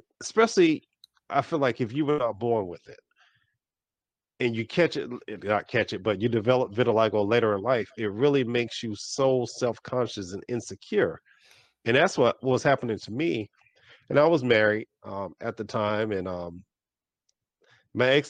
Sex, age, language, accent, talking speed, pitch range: male, 40-59, English, American, 170 wpm, 105-140 Hz